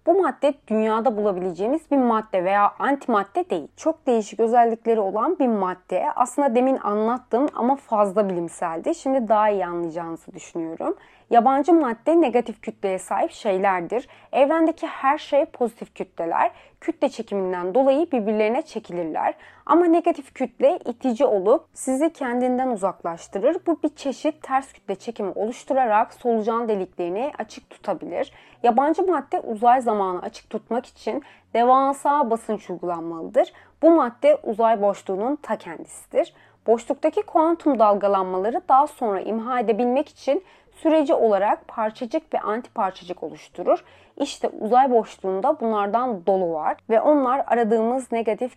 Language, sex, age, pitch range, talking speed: Turkish, female, 30-49, 205-280 Hz, 125 wpm